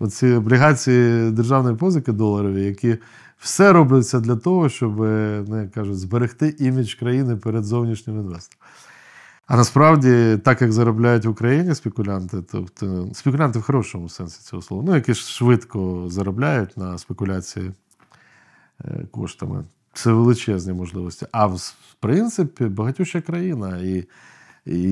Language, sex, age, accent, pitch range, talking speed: Ukrainian, male, 40-59, native, 100-140 Hz, 120 wpm